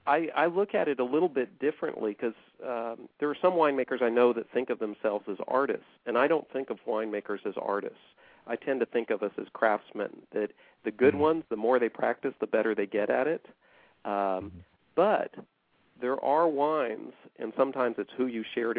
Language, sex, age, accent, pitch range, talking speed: English, male, 50-69, American, 110-130 Hz, 200 wpm